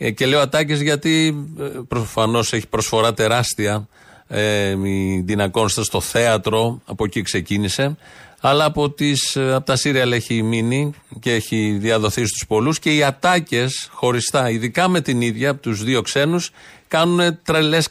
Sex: male